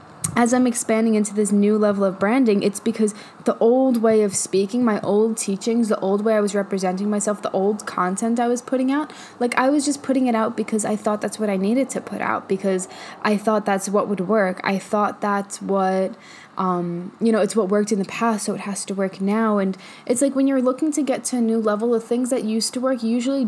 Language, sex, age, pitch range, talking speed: English, female, 10-29, 195-235 Hz, 245 wpm